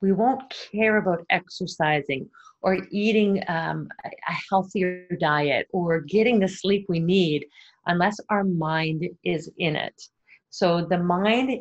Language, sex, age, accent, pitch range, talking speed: English, female, 40-59, American, 160-190 Hz, 135 wpm